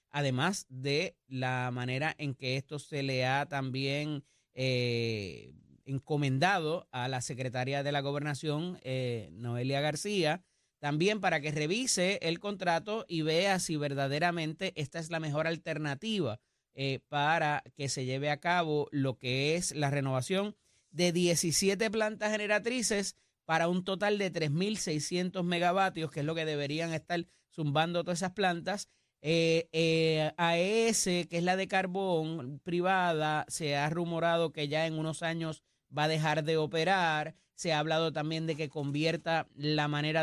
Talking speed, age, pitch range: 150 wpm, 30-49, 145-170 Hz